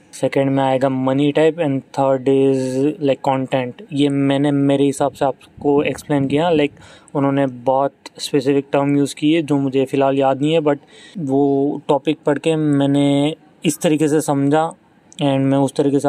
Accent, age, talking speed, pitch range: native, 20-39, 175 wpm, 135-145 Hz